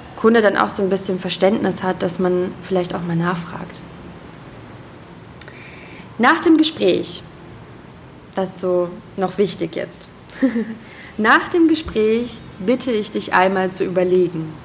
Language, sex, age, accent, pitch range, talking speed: German, female, 20-39, German, 175-205 Hz, 125 wpm